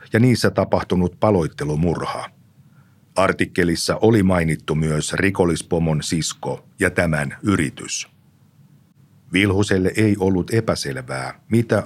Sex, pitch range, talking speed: male, 80-110 Hz, 90 wpm